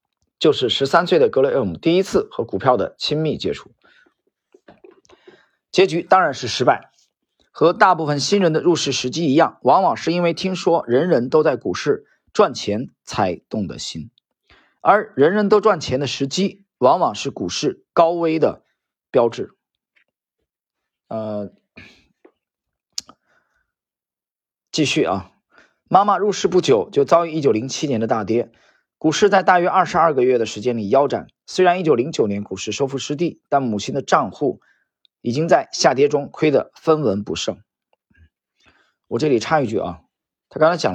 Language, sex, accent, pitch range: Chinese, male, native, 120-190 Hz